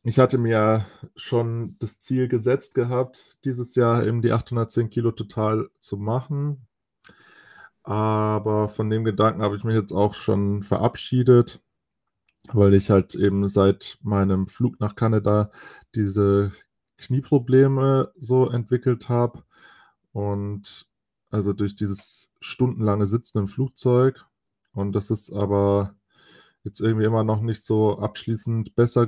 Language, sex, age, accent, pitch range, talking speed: German, male, 20-39, German, 100-120 Hz, 130 wpm